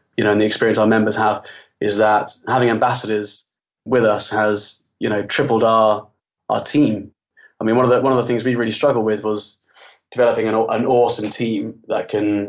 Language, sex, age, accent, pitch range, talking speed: English, male, 20-39, British, 105-115 Hz, 200 wpm